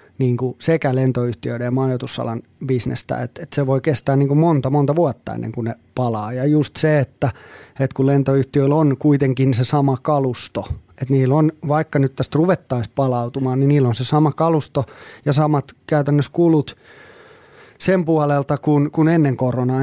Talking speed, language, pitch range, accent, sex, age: 175 wpm, Finnish, 125-150 Hz, native, male, 20-39